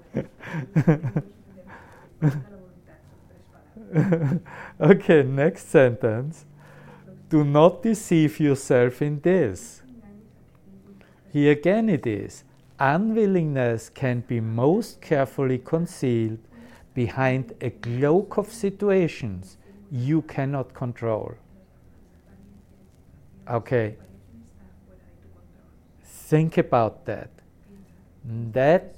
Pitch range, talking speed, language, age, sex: 110-165 Hz, 65 wpm, English, 50-69, male